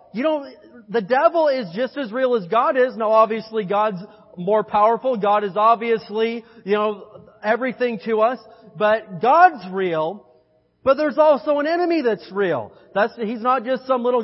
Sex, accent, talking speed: male, American, 170 wpm